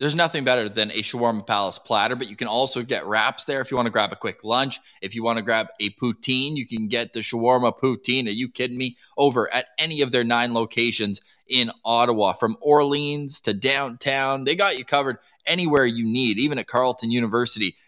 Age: 20-39